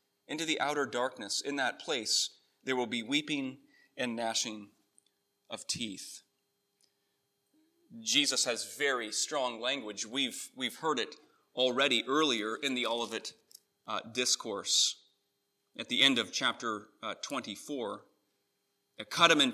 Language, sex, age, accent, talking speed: English, male, 30-49, American, 125 wpm